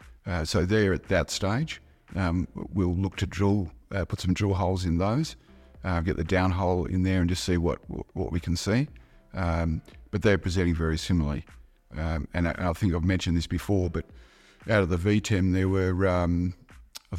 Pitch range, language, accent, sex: 80-95 Hz, English, Australian, male